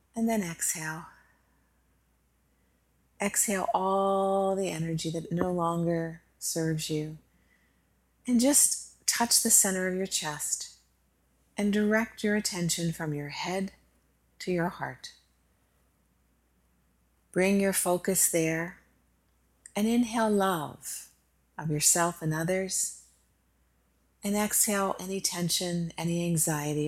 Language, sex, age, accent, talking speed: English, female, 40-59, American, 105 wpm